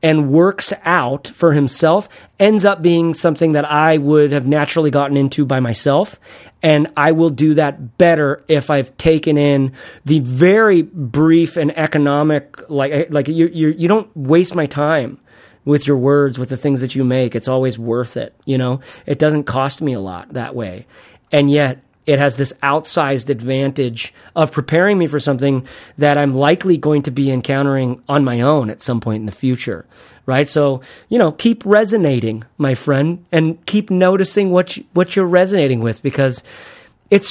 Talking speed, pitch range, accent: 180 wpm, 135-180 Hz, American